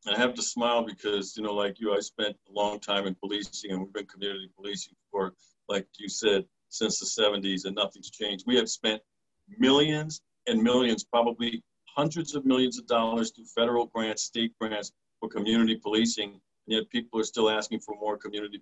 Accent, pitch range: American, 110-160 Hz